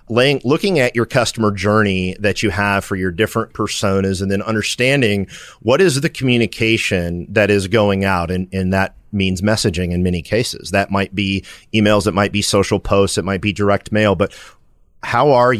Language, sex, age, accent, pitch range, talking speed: English, male, 40-59, American, 95-110 Hz, 185 wpm